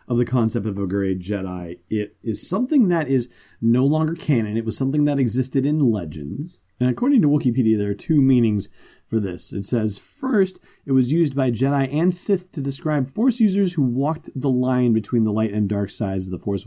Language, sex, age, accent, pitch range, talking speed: English, male, 40-59, American, 100-130 Hz, 210 wpm